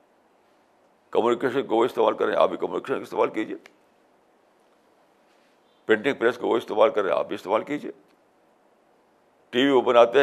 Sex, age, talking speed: male, 60-79, 165 wpm